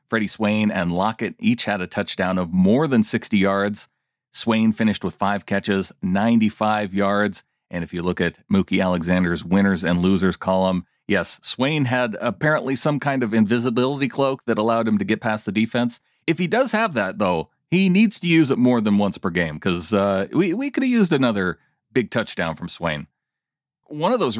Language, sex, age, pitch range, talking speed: English, male, 40-59, 105-155 Hz, 190 wpm